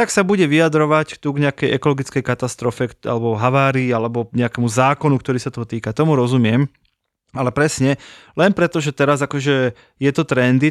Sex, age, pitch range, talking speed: male, 20-39, 130-160 Hz, 170 wpm